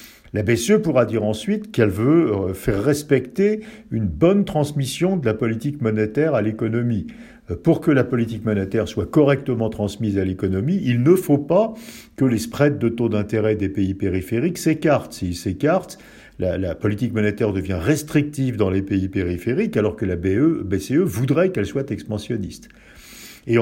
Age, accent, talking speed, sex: 50-69, French, 160 wpm, male